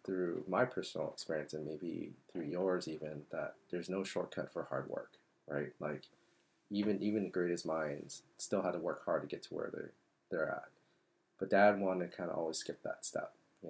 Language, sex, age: English, male, 30-49